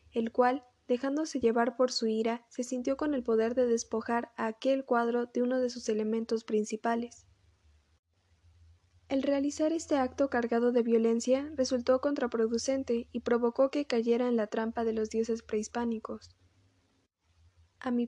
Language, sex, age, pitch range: Spanish, female, 10-29, 225-260 Hz